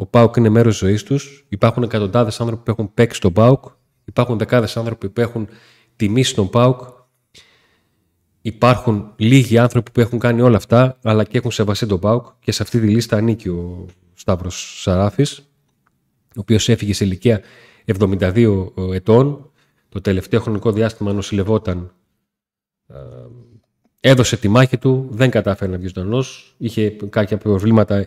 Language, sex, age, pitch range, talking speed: Greek, male, 30-49, 105-125 Hz, 145 wpm